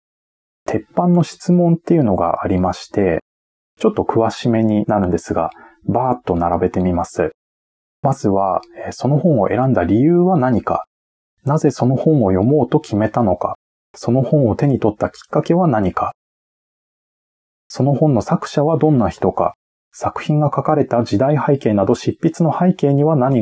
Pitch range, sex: 105-155 Hz, male